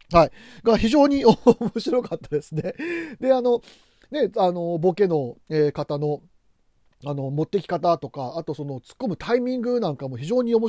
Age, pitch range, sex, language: 40-59, 150-245 Hz, male, Japanese